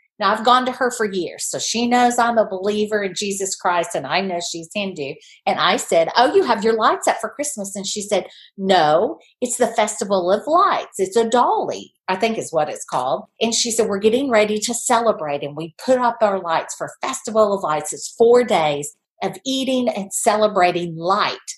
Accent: American